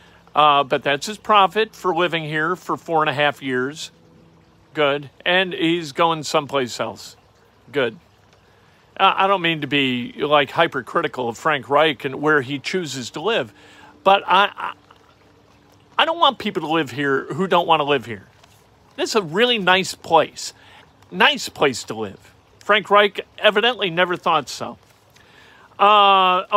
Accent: American